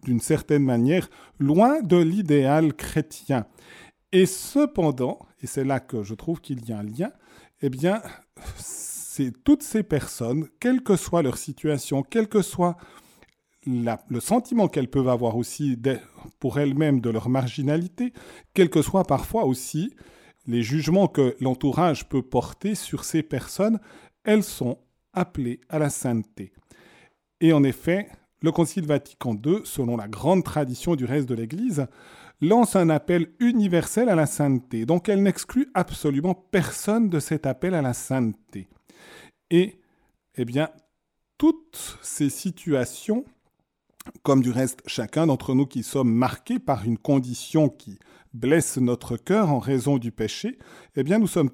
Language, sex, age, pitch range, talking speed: French, male, 40-59, 130-180 Hz, 150 wpm